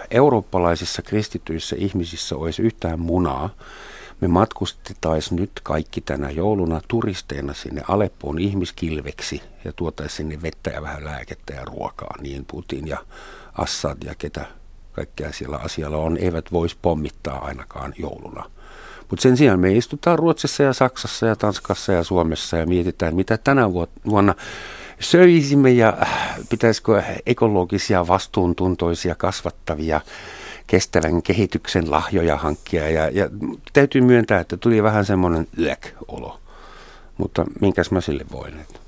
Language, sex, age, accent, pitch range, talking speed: Finnish, male, 50-69, native, 80-105 Hz, 125 wpm